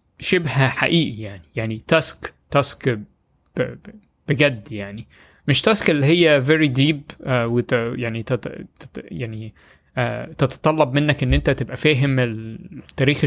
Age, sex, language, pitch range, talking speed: 20-39, male, Arabic, 120-155 Hz, 120 wpm